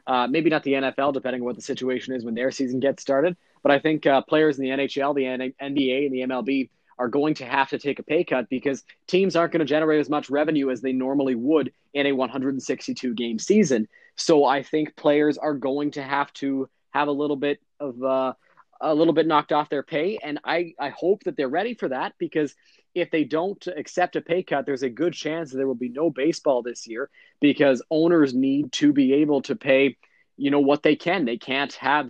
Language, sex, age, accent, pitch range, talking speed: English, male, 20-39, American, 130-155 Hz, 230 wpm